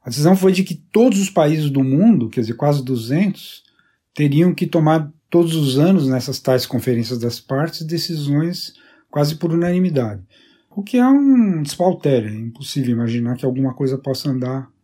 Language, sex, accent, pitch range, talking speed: Portuguese, male, Brazilian, 130-185 Hz, 170 wpm